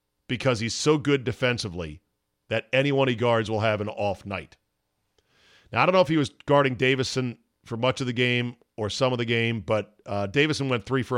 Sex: male